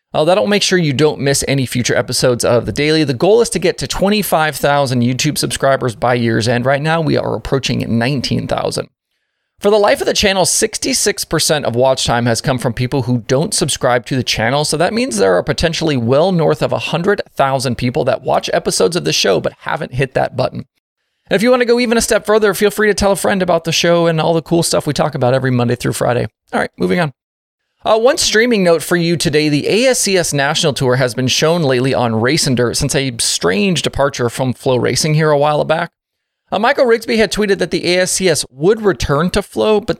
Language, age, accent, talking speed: English, 30-49, American, 225 wpm